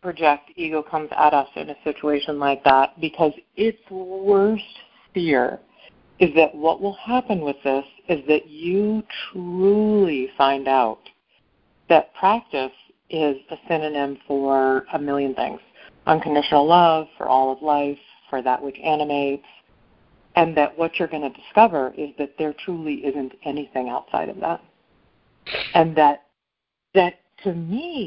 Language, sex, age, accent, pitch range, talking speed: English, female, 50-69, American, 145-180 Hz, 145 wpm